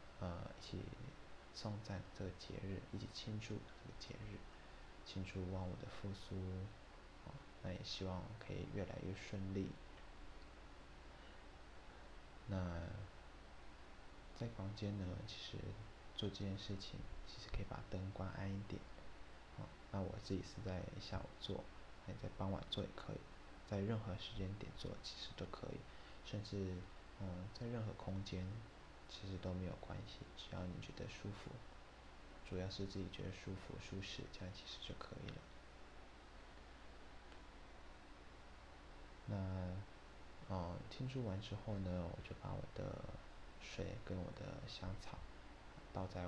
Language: Chinese